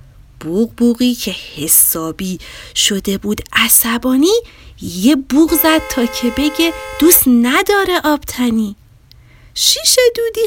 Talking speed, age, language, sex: 105 wpm, 40-59, Persian, female